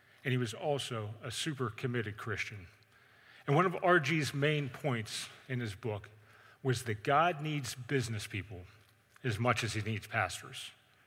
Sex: male